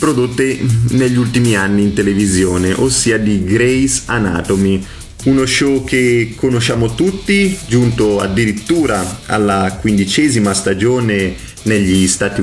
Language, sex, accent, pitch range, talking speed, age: Italian, male, native, 100-120 Hz, 105 wpm, 30-49